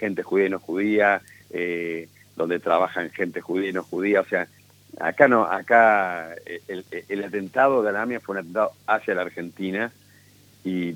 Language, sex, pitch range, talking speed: Spanish, male, 90-105 Hz, 170 wpm